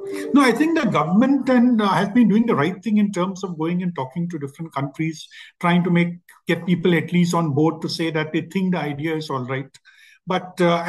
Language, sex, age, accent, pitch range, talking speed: English, male, 50-69, Indian, 165-195 Hz, 235 wpm